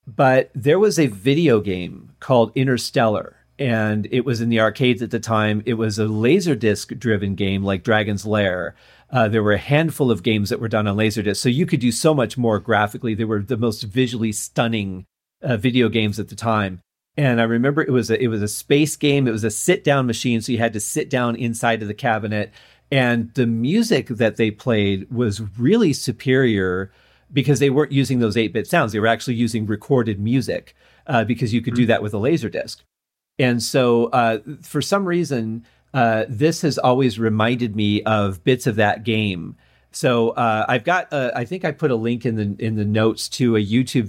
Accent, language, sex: American, English, male